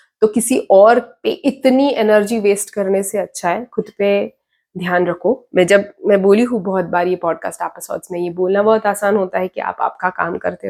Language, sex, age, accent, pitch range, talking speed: English, female, 20-39, Indian, 185-215 Hz, 210 wpm